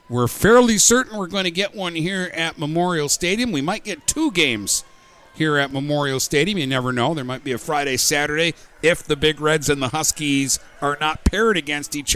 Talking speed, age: 205 wpm, 50-69